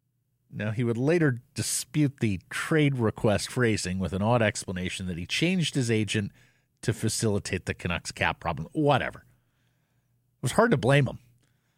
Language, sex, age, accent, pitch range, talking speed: English, male, 50-69, American, 110-150 Hz, 160 wpm